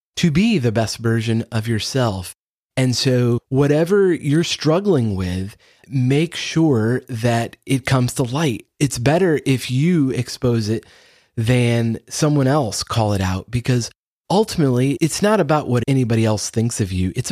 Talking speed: 150 wpm